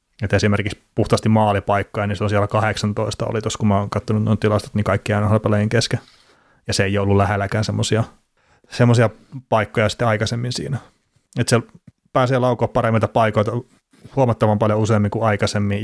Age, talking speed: 30-49, 165 wpm